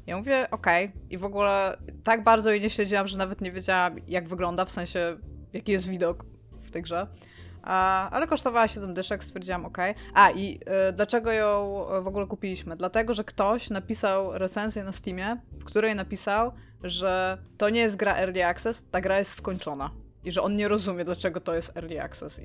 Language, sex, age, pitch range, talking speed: Polish, female, 20-39, 145-210 Hz, 190 wpm